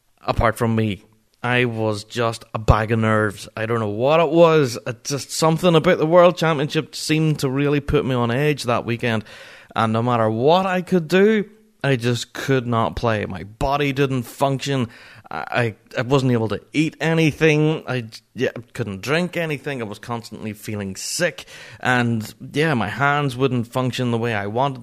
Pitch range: 115-155 Hz